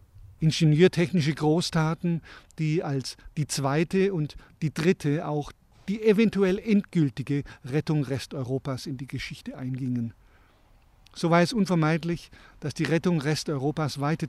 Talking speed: 120 wpm